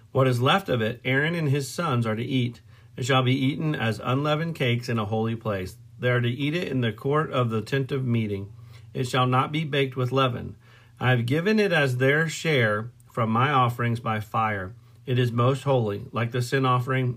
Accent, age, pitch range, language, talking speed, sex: American, 40-59, 115-135 Hz, English, 220 wpm, male